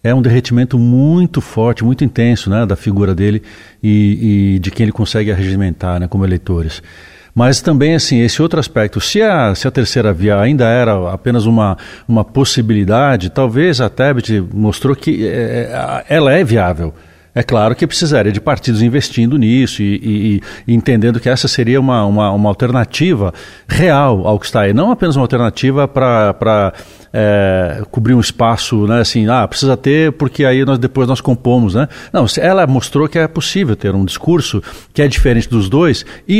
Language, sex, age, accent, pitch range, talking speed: Portuguese, male, 60-79, Brazilian, 105-135 Hz, 175 wpm